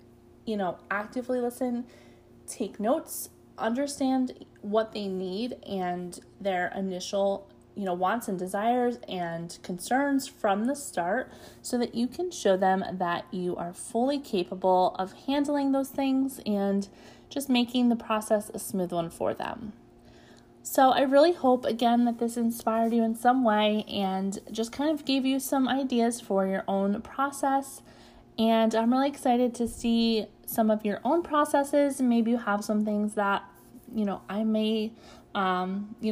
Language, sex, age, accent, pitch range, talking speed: English, female, 20-39, American, 195-250 Hz, 160 wpm